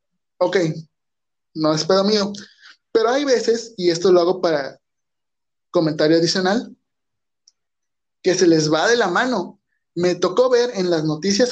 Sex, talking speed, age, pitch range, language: male, 145 wpm, 20-39, 170-210 Hz, Spanish